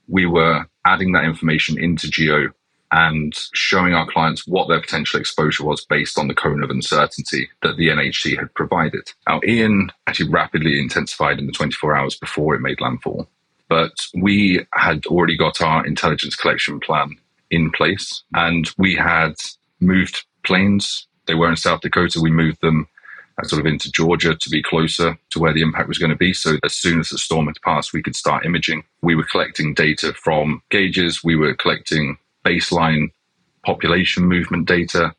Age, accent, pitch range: 30-49, British, 80-90 Hz